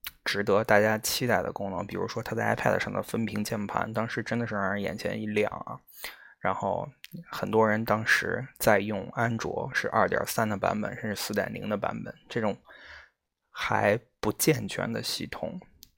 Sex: male